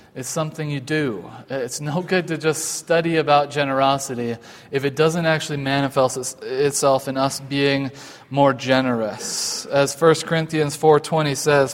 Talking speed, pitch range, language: 145 wpm, 130-155 Hz, English